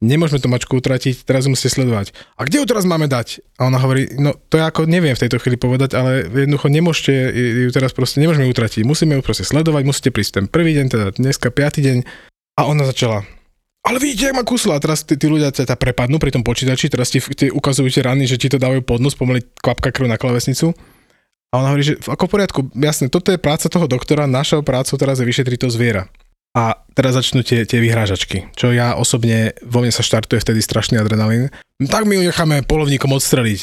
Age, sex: 20-39, male